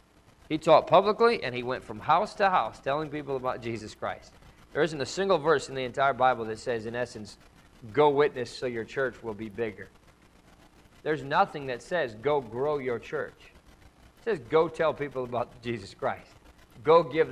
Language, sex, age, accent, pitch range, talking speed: English, male, 40-59, American, 115-145 Hz, 185 wpm